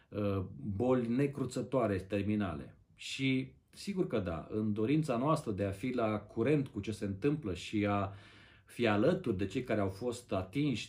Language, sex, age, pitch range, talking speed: Romanian, male, 40-59, 100-125 Hz, 160 wpm